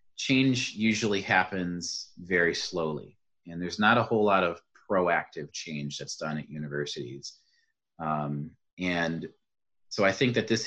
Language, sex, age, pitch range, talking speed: English, male, 30-49, 80-100 Hz, 140 wpm